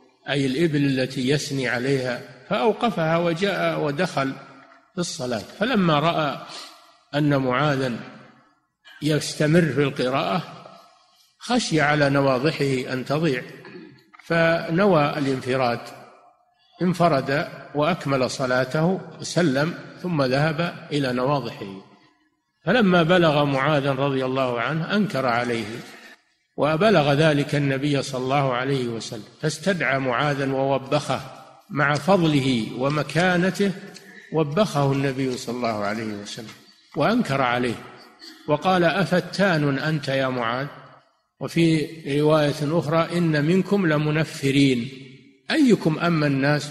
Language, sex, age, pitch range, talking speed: Arabic, male, 50-69, 130-170 Hz, 95 wpm